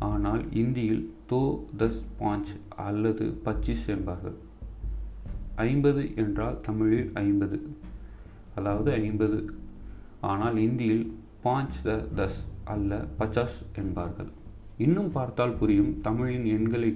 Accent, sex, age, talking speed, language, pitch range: native, male, 30-49, 95 wpm, Tamil, 100-115 Hz